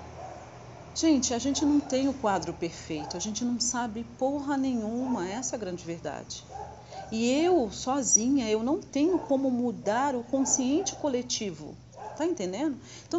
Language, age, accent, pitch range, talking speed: Portuguese, 40-59, Brazilian, 185-260 Hz, 150 wpm